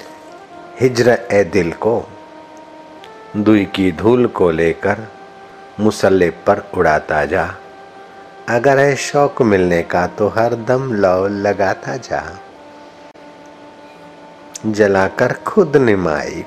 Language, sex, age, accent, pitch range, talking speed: Hindi, male, 60-79, native, 100-170 Hz, 100 wpm